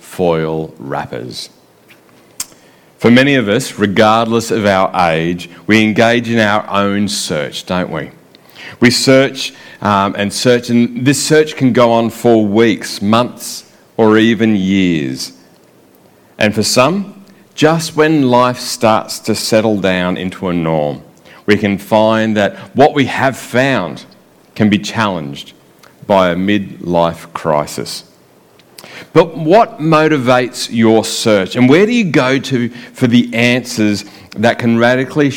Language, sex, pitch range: English, male, 95-125 Hz